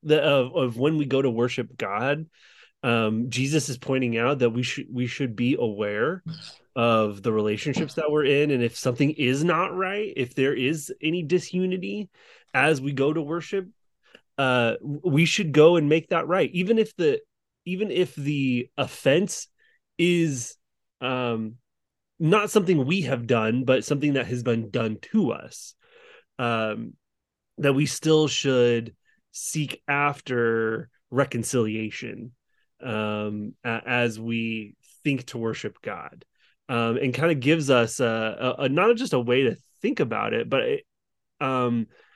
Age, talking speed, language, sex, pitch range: 20-39, 150 wpm, English, male, 120-155 Hz